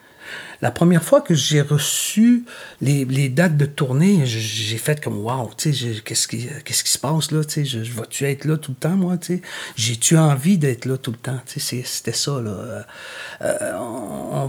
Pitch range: 120-155 Hz